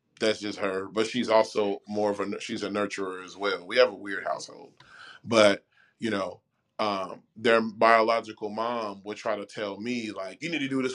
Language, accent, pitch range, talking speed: English, American, 105-125 Hz, 205 wpm